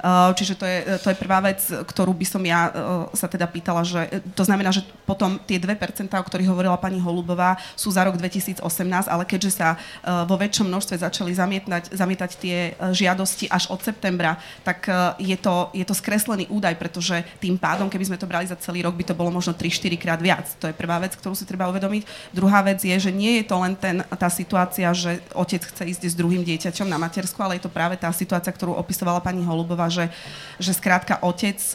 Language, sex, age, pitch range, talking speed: Slovak, female, 30-49, 175-195 Hz, 210 wpm